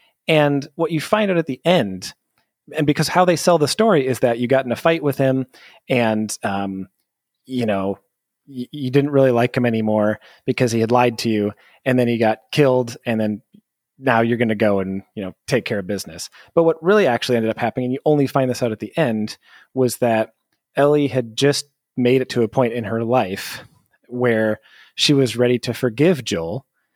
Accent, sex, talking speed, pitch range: American, male, 215 wpm, 110-140 Hz